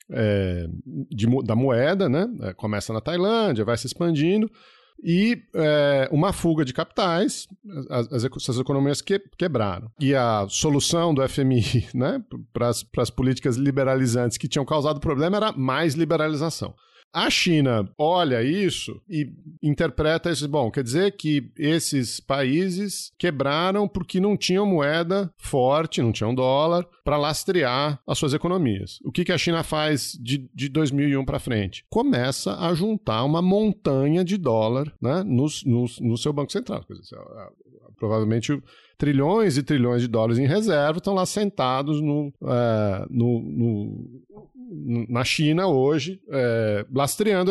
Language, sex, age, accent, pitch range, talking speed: Portuguese, male, 40-59, Brazilian, 120-170 Hz, 135 wpm